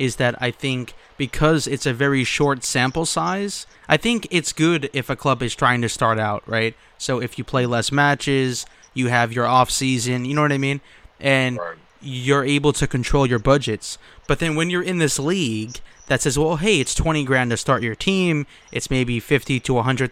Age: 20-39